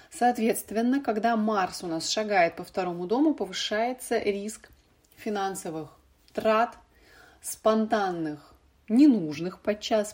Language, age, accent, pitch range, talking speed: Russian, 30-49, native, 170-220 Hz, 95 wpm